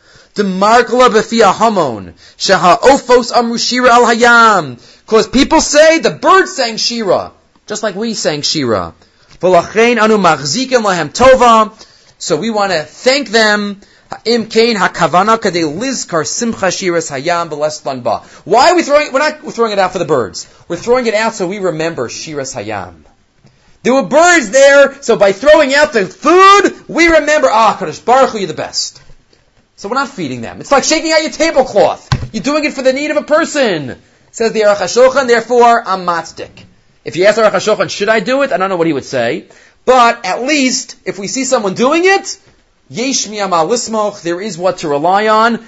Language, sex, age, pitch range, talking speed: English, male, 30-49, 175-255 Hz, 150 wpm